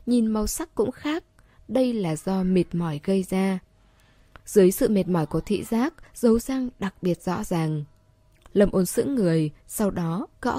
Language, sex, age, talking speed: Vietnamese, female, 20-39, 180 wpm